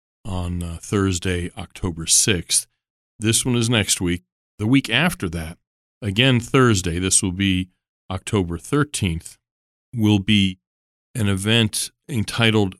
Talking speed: 120 wpm